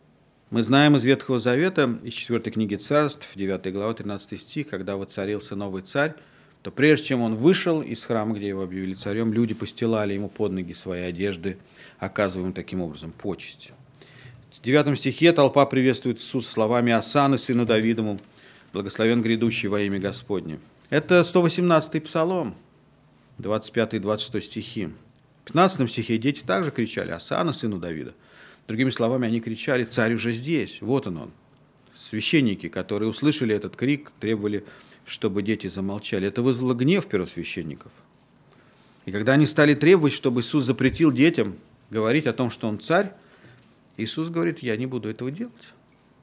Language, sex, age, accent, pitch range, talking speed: Russian, male, 40-59, native, 105-140 Hz, 150 wpm